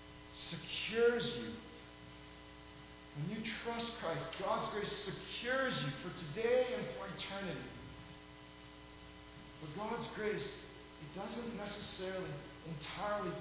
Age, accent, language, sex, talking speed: 40-59, American, English, male, 100 wpm